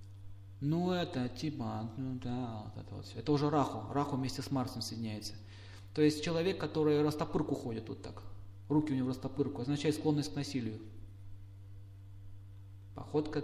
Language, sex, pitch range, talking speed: Russian, male, 100-155 Hz, 150 wpm